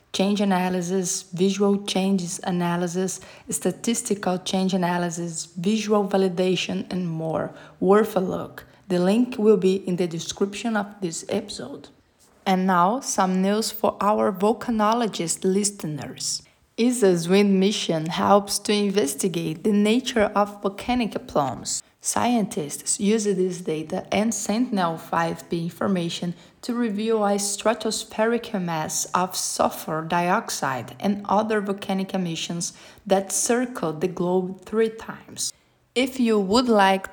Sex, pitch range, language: female, 180-215 Hz, English